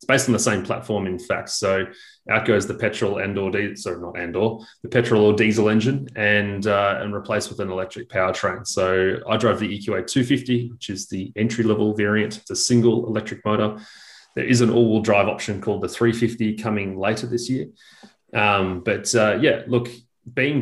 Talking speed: 200 wpm